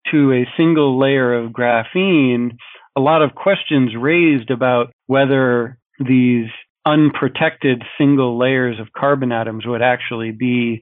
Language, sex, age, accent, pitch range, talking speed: English, male, 40-59, American, 120-145 Hz, 130 wpm